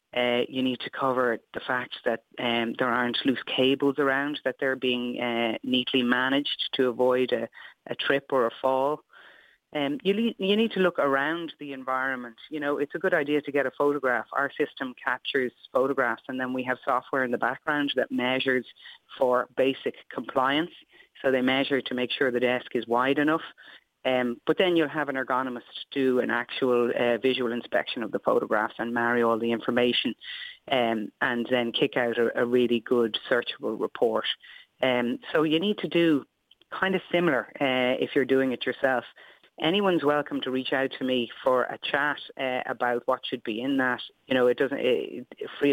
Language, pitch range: English, 125-140 Hz